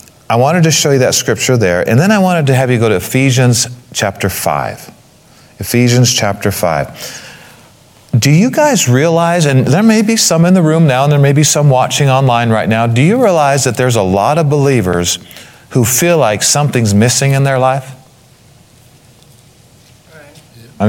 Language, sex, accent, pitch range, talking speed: English, male, American, 125-165 Hz, 180 wpm